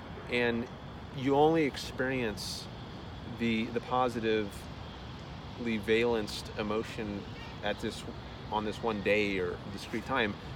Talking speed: 110 wpm